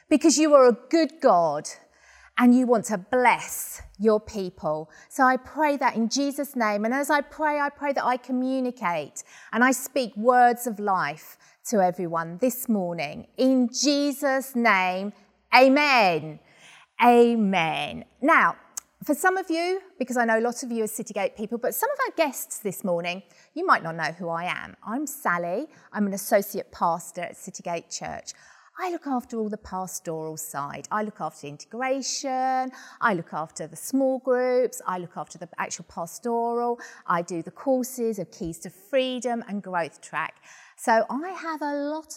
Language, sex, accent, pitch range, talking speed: English, female, British, 180-260 Hz, 170 wpm